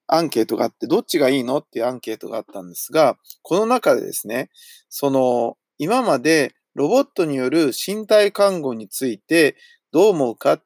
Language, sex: Japanese, male